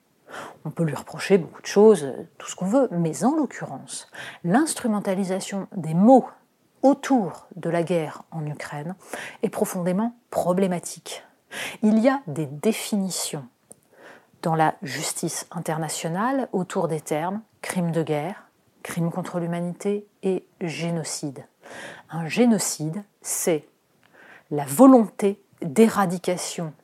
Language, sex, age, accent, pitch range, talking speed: French, female, 40-59, French, 170-225 Hz, 115 wpm